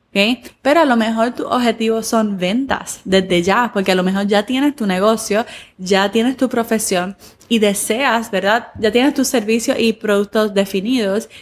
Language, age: Spanish, 20-39